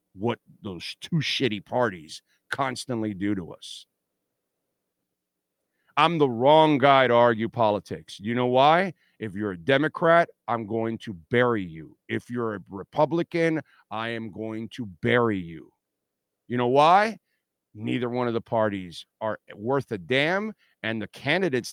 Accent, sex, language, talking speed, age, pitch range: American, male, English, 145 wpm, 50-69, 105-145 Hz